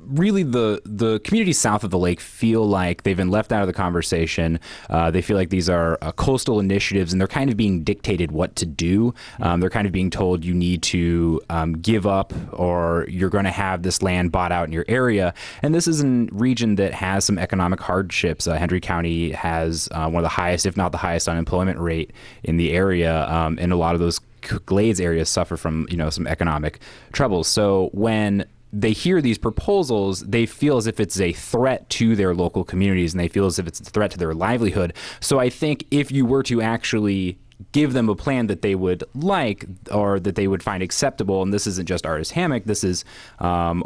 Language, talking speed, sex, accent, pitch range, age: English, 220 wpm, male, American, 85-105 Hz, 20-39